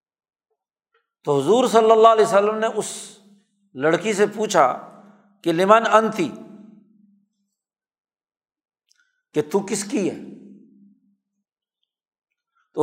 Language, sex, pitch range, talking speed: Urdu, male, 145-210 Hz, 95 wpm